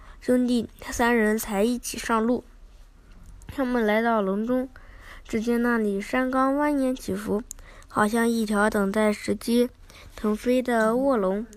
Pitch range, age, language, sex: 215-265 Hz, 10-29, Chinese, female